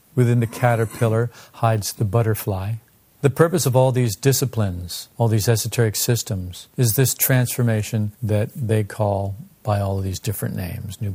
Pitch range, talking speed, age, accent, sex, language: 110-135 Hz, 155 wpm, 50-69, American, male, English